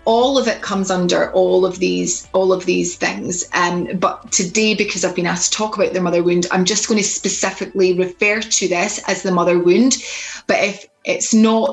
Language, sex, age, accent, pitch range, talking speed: English, female, 30-49, British, 180-220 Hz, 210 wpm